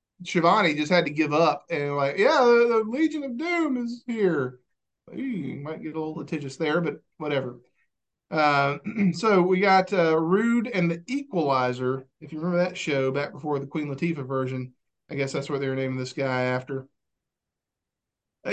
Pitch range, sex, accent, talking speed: 140-185 Hz, male, American, 180 wpm